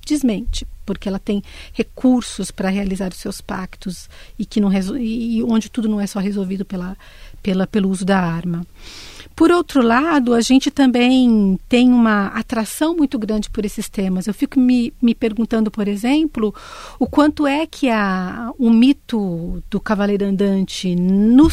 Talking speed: 155 wpm